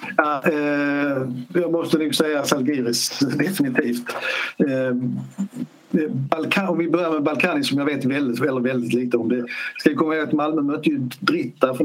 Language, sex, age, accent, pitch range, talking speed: Swedish, male, 60-79, native, 120-160 Hz, 160 wpm